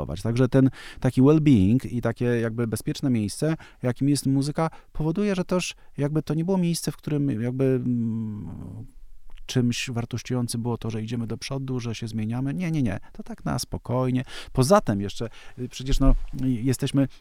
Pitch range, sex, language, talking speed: 115-145 Hz, male, Polish, 160 wpm